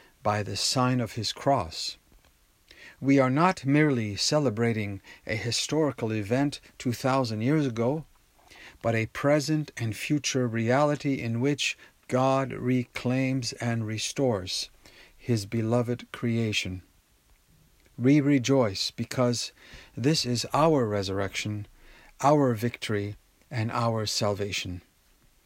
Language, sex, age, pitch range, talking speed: English, male, 50-69, 105-130 Hz, 105 wpm